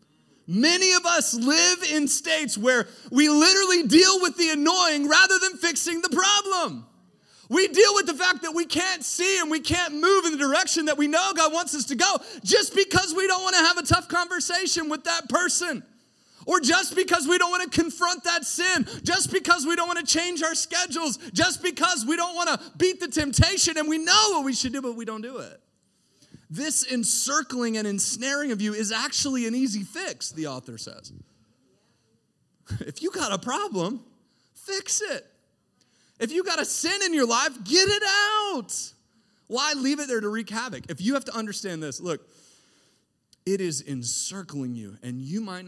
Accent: American